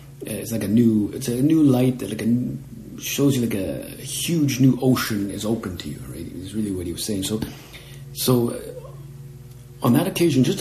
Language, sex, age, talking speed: English, male, 50-69, 205 wpm